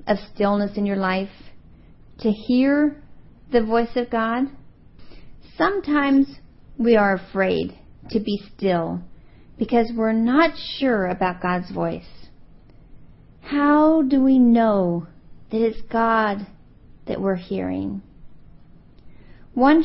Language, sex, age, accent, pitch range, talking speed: English, female, 40-59, American, 180-235 Hz, 110 wpm